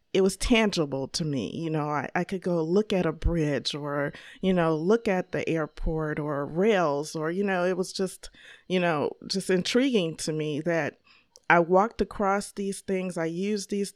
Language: English